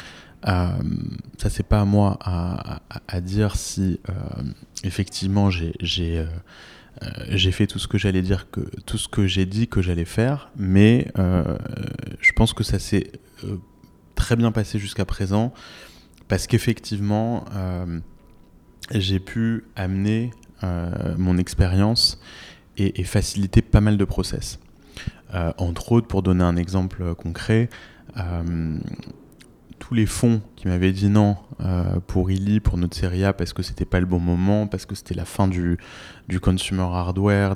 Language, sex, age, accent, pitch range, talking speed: French, male, 20-39, French, 90-105 Hz, 160 wpm